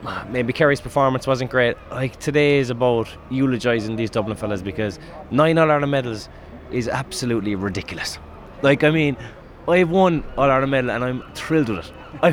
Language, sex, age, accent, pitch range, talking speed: English, male, 20-39, Irish, 115-165 Hz, 160 wpm